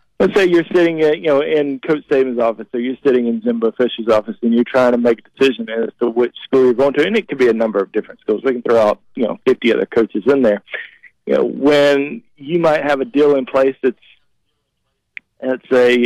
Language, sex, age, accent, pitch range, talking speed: English, male, 40-59, American, 115-135 Hz, 245 wpm